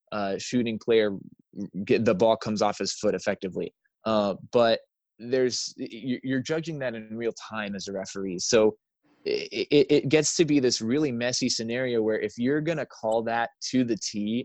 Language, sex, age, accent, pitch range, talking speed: English, male, 20-39, American, 110-135 Hz, 180 wpm